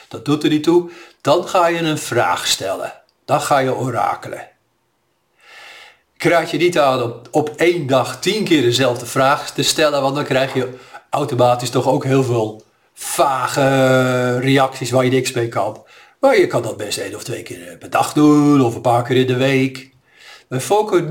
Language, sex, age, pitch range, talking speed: Dutch, male, 50-69, 125-150 Hz, 190 wpm